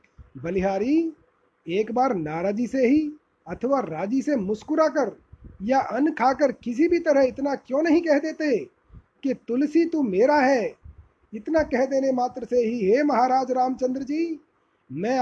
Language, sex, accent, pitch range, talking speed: Hindi, male, native, 235-275 Hz, 150 wpm